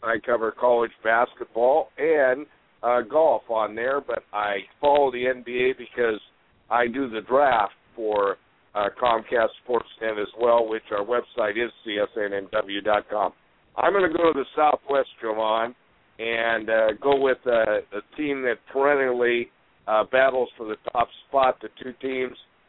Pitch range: 115-135 Hz